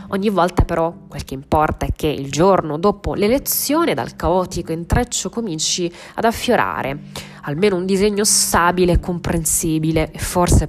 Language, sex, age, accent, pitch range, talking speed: Italian, female, 20-39, native, 155-195 Hz, 145 wpm